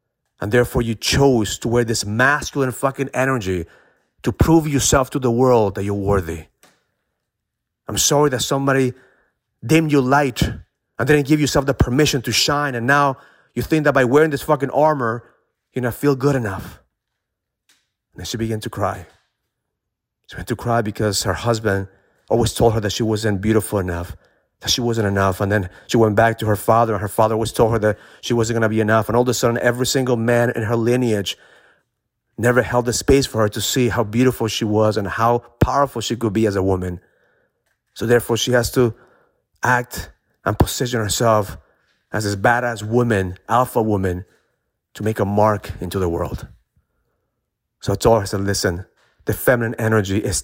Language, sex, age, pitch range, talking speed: English, male, 30-49, 105-125 Hz, 190 wpm